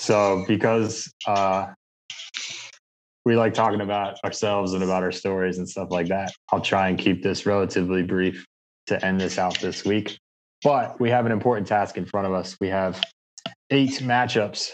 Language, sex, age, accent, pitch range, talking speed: English, male, 20-39, American, 95-115 Hz, 175 wpm